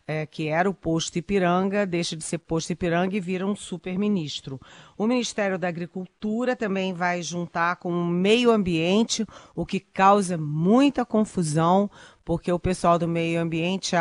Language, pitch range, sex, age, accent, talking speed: Portuguese, 170-205 Hz, female, 40-59, Brazilian, 160 wpm